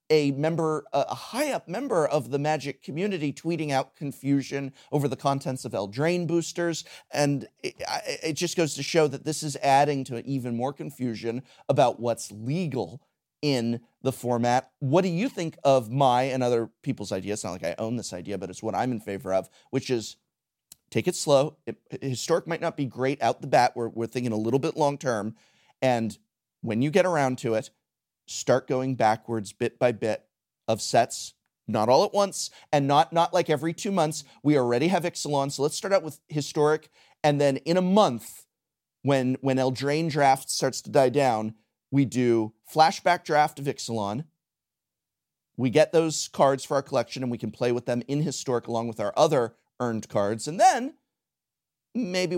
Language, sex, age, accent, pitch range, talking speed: English, male, 30-49, American, 120-155 Hz, 190 wpm